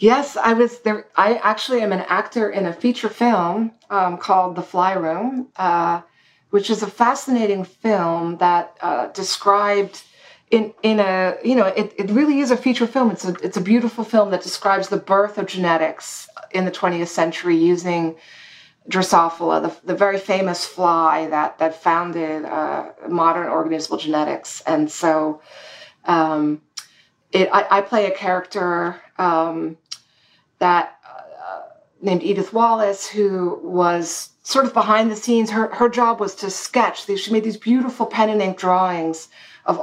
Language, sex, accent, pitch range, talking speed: English, female, American, 175-220 Hz, 160 wpm